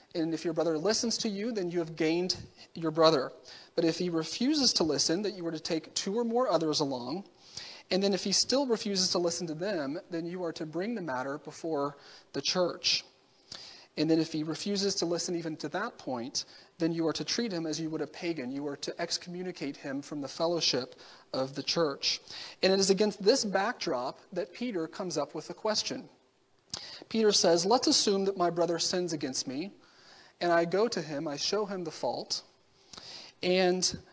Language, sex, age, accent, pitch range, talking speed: English, male, 40-59, American, 160-195 Hz, 205 wpm